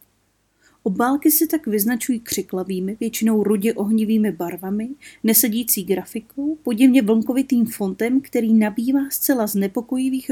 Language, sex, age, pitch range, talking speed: Czech, female, 30-49, 195-260 Hz, 105 wpm